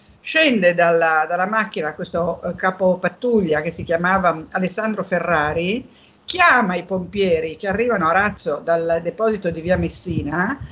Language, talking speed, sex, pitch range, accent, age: Italian, 140 wpm, female, 180-235 Hz, native, 50-69